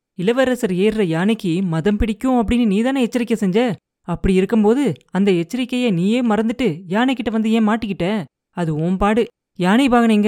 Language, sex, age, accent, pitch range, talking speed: Tamil, female, 20-39, native, 180-230 Hz, 135 wpm